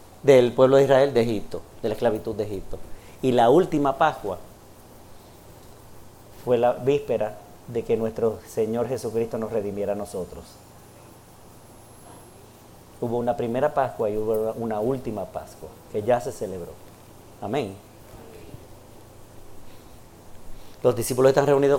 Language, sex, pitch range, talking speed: Spanish, male, 105-135 Hz, 125 wpm